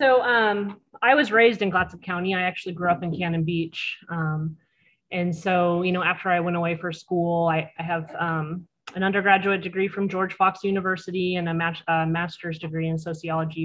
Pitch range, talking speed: 165-195 Hz, 195 wpm